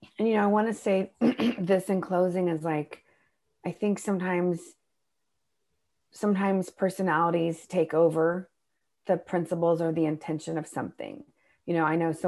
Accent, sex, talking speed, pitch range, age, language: American, female, 150 wpm, 160-200 Hz, 40-59, English